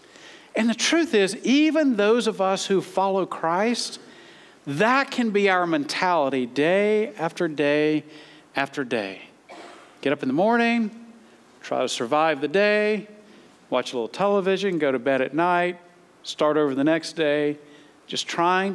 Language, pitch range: English, 155-220 Hz